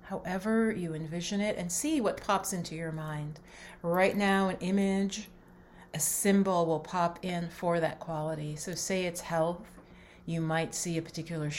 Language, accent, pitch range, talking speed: English, American, 155-190 Hz, 165 wpm